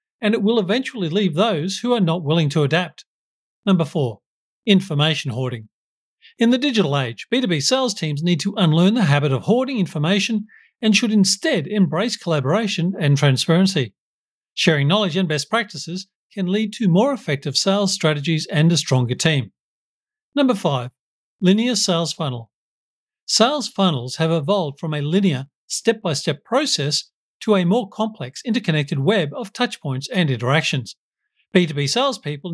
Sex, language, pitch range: male, English, 150-215 Hz